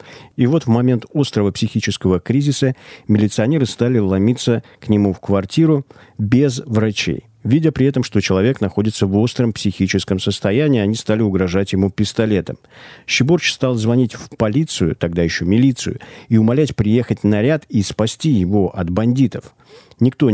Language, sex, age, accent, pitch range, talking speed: Russian, male, 50-69, native, 95-120 Hz, 145 wpm